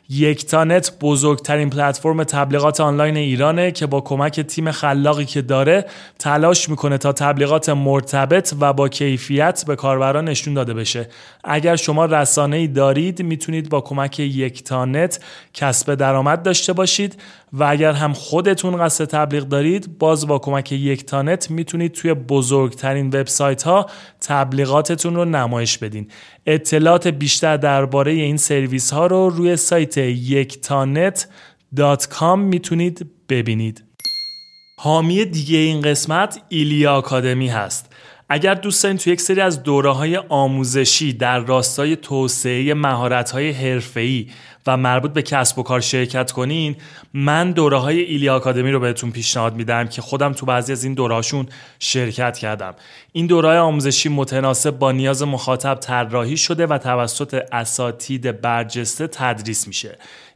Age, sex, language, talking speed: 30-49, male, Persian, 135 wpm